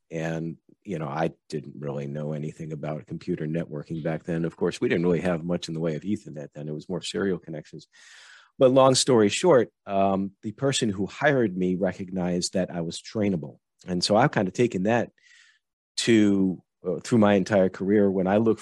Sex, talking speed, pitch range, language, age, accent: male, 200 wpm, 90-105 Hz, English, 40-59, American